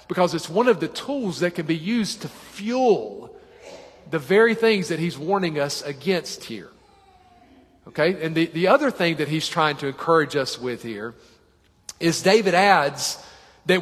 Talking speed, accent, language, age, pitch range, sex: 170 wpm, American, English, 40-59, 160-220 Hz, male